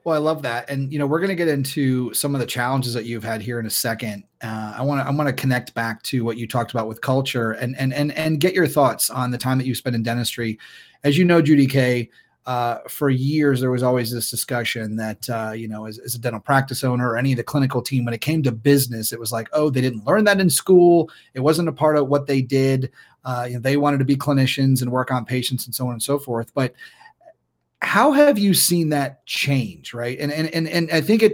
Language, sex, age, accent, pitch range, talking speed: English, male, 30-49, American, 125-155 Hz, 265 wpm